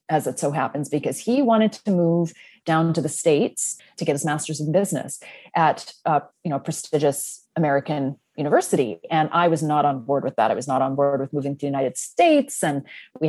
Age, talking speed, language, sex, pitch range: 30-49, 210 wpm, English, female, 155-185 Hz